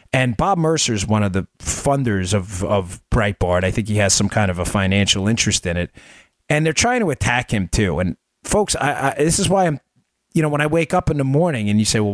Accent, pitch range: American, 110-155 Hz